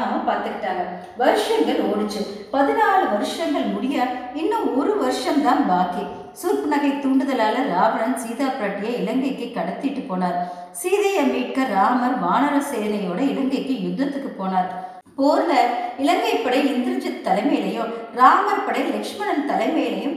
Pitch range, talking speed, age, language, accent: 230-290 Hz, 105 wpm, 50-69, Tamil, native